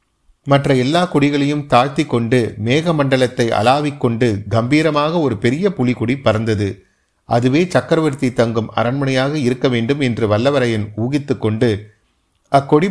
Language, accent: Tamil, native